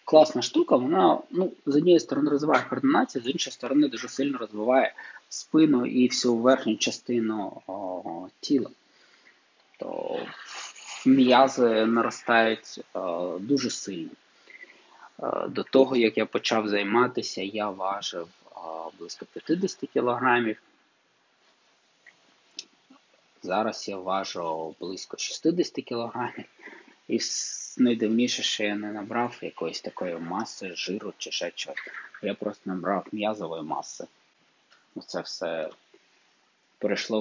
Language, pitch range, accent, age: Ukrainian, 105-150 Hz, native, 20-39